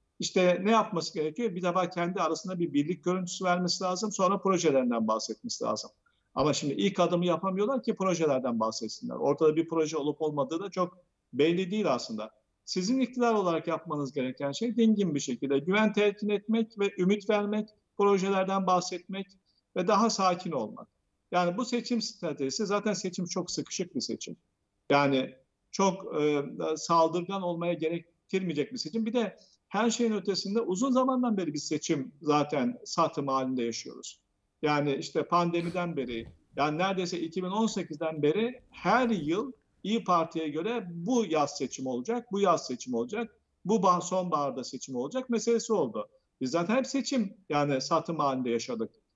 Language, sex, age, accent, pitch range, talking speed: Turkish, male, 50-69, native, 155-210 Hz, 150 wpm